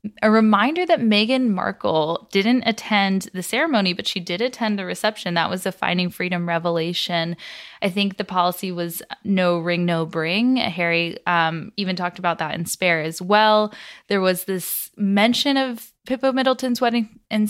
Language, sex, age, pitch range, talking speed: English, female, 20-39, 175-215 Hz, 170 wpm